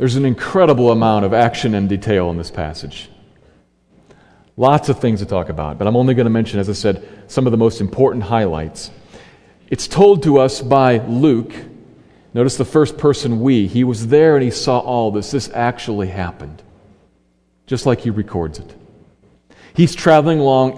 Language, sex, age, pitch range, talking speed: English, male, 40-59, 110-145 Hz, 180 wpm